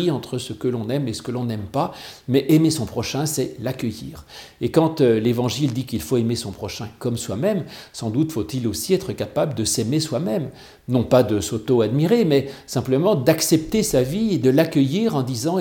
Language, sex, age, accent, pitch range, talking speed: French, male, 50-69, French, 120-150 Hz, 195 wpm